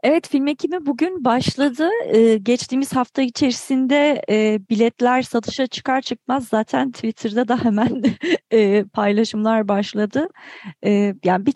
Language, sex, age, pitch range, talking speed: Turkish, female, 40-59, 195-255 Hz, 120 wpm